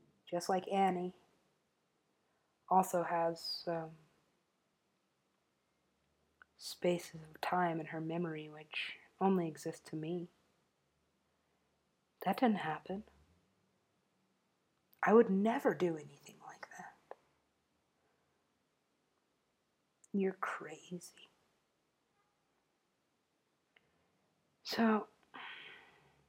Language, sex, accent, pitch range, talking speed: English, female, American, 175-195 Hz, 70 wpm